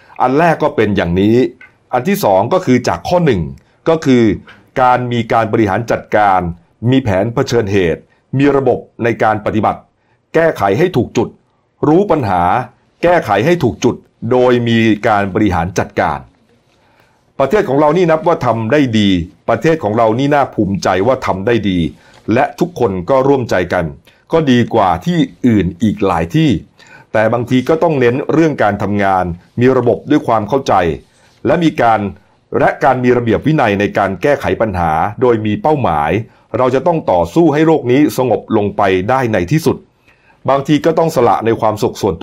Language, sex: Thai, male